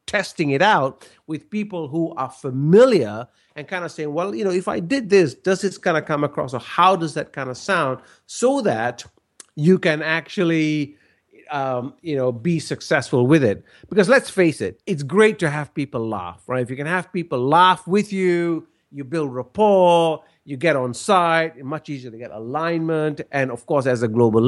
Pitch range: 130-170 Hz